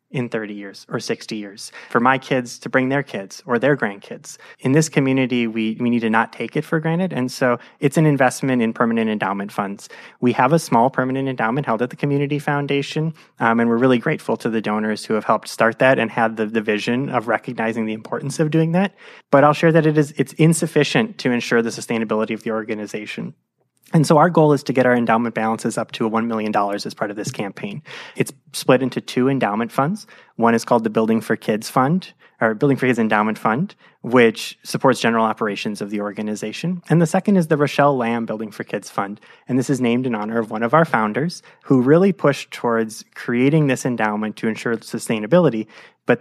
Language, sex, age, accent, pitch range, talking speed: English, male, 20-39, American, 115-145 Hz, 215 wpm